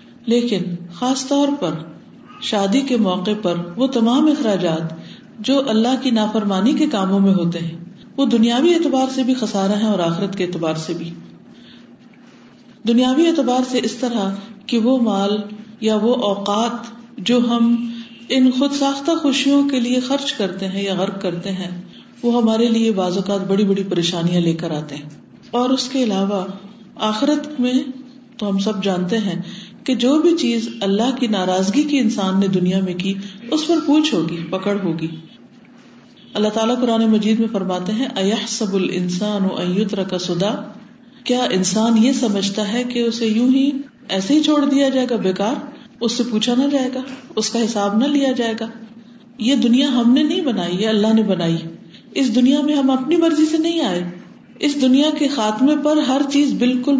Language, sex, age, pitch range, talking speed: Urdu, female, 50-69, 195-260 Hz, 175 wpm